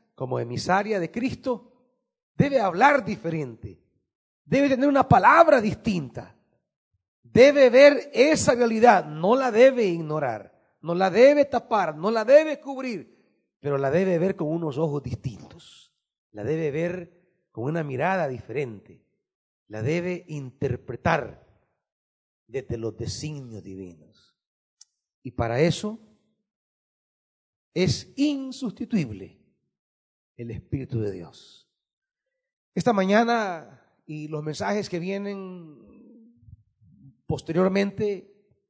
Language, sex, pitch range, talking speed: Spanish, male, 145-225 Hz, 105 wpm